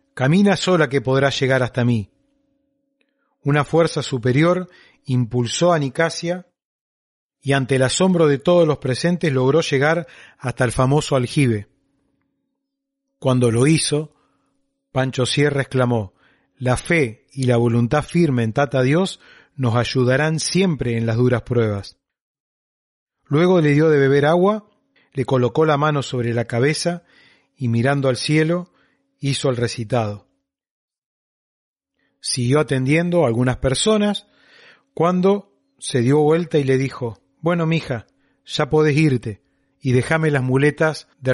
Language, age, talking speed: Spanish, 40-59, 135 wpm